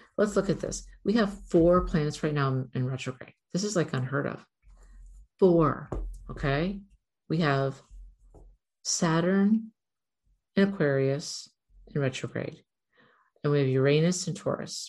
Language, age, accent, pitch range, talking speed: English, 50-69, American, 140-170 Hz, 130 wpm